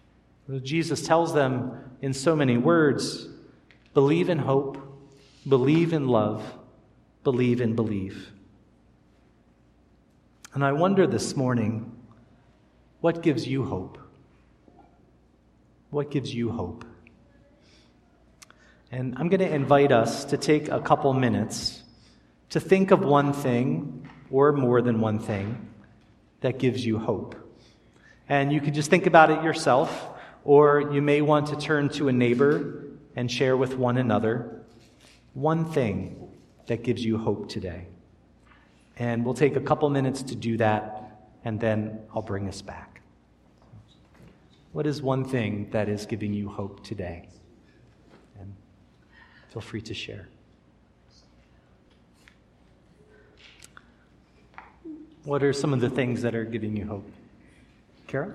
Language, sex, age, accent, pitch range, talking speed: English, male, 40-59, American, 105-140 Hz, 130 wpm